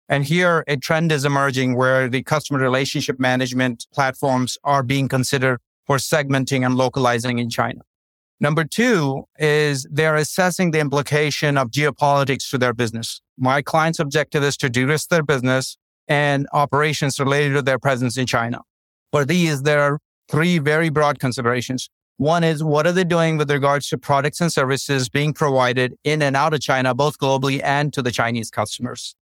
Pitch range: 130-150 Hz